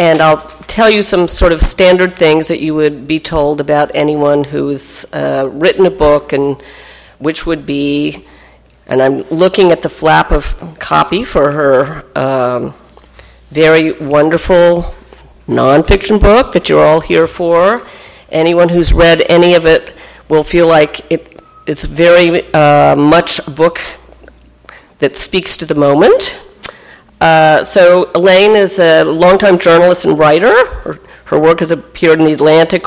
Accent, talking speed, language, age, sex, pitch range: American, 150 wpm, English, 50-69, female, 150-180 Hz